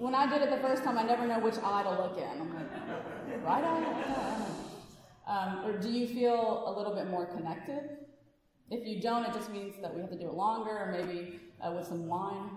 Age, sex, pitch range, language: 30-49, female, 190-240 Hz, English